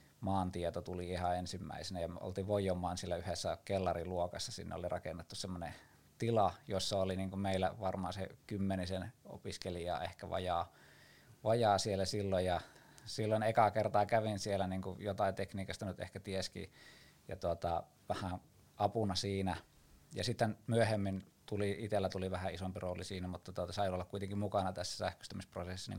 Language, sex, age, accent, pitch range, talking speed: Finnish, male, 20-39, native, 90-105 Hz, 155 wpm